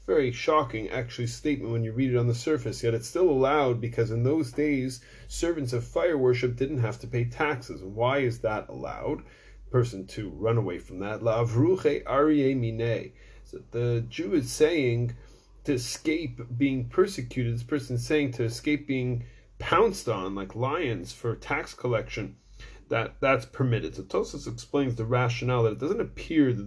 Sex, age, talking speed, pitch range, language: male, 30-49, 170 wpm, 115-135 Hz, English